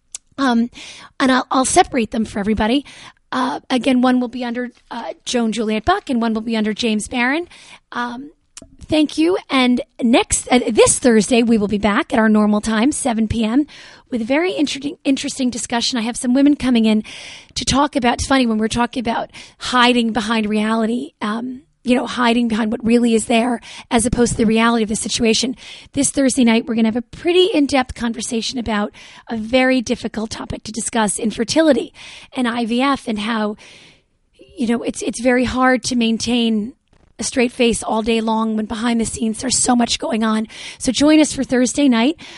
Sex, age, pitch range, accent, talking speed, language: female, 30-49, 225-265 Hz, American, 195 wpm, English